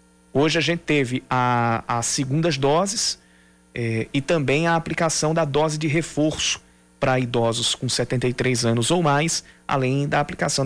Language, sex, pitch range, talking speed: Portuguese, male, 120-160 Hz, 145 wpm